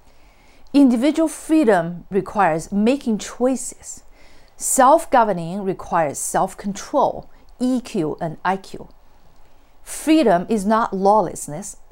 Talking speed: 75 wpm